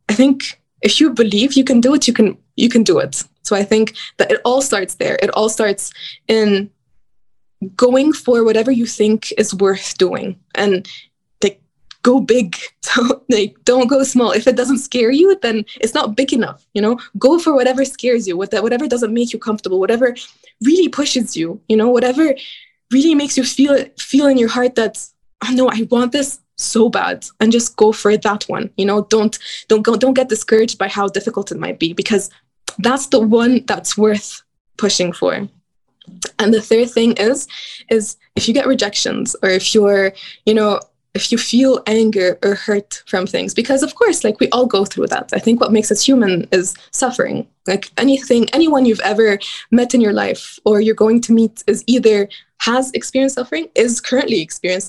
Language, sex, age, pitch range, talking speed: English, female, 20-39, 205-255 Hz, 200 wpm